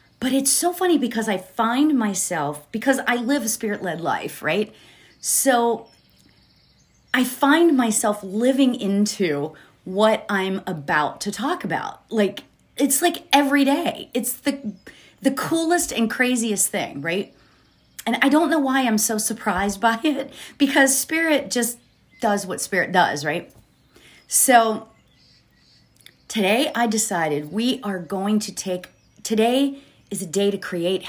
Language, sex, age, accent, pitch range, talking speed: English, female, 40-59, American, 195-275 Hz, 140 wpm